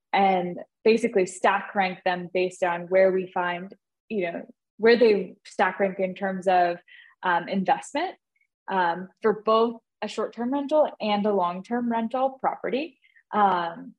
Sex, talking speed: female, 150 wpm